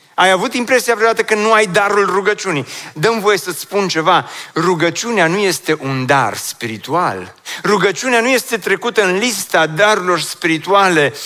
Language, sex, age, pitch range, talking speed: Romanian, male, 40-59, 175-225 Hz, 150 wpm